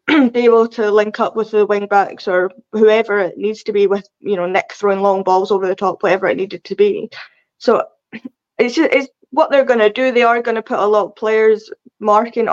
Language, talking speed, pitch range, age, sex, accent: English, 225 wpm, 200-235 Hz, 10-29, female, British